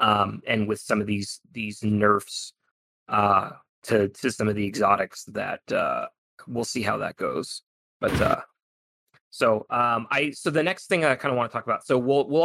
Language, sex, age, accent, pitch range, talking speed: English, male, 20-39, American, 105-125 Hz, 200 wpm